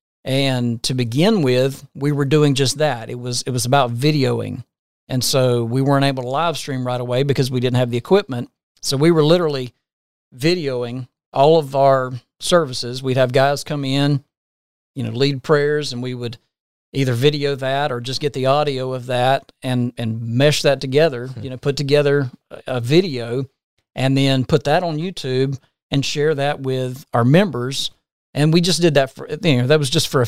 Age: 40-59